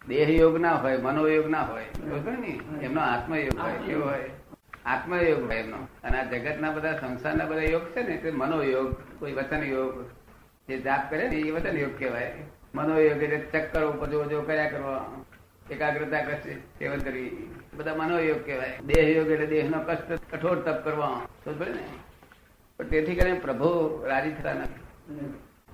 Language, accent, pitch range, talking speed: Gujarati, native, 130-160 Hz, 65 wpm